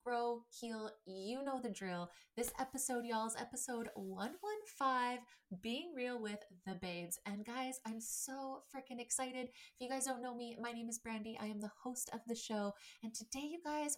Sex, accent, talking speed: female, American, 185 wpm